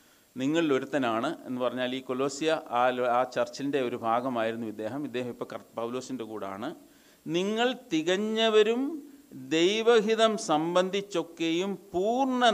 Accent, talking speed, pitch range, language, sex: native, 95 wpm, 125-195 Hz, Malayalam, male